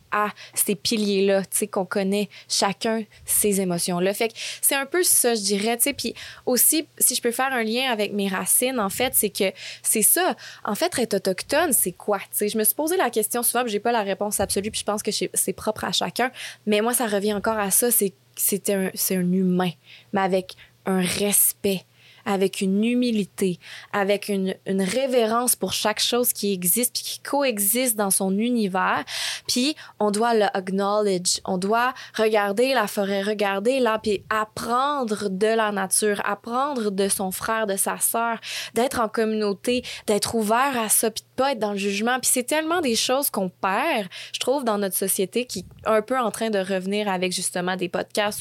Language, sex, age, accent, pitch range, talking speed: French, female, 20-39, Canadian, 195-235 Hz, 200 wpm